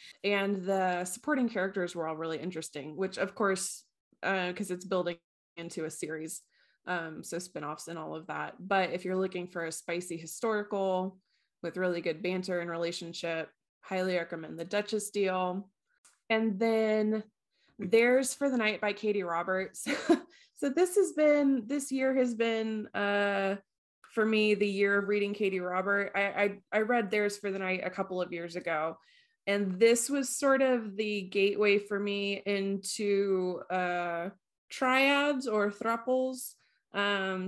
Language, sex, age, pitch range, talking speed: English, female, 20-39, 180-215 Hz, 155 wpm